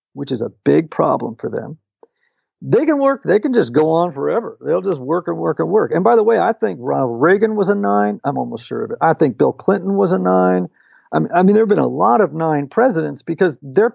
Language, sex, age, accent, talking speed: English, male, 50-69, American, 250 wpm